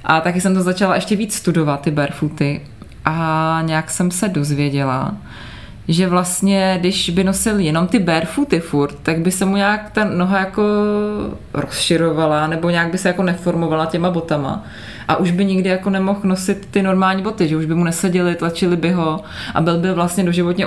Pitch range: 160-185 Hz